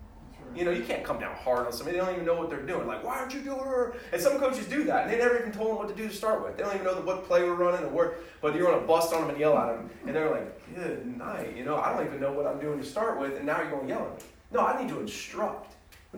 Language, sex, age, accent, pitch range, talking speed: English, male, 30-49, American, 145-185 Hz, 340 wpm